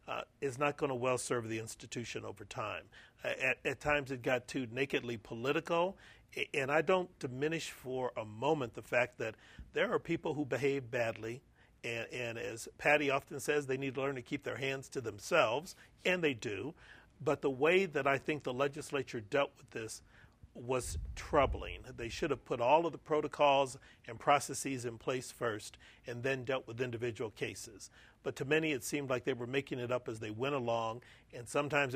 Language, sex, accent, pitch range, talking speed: English, male, American, 125-145 Hz, 195 wpm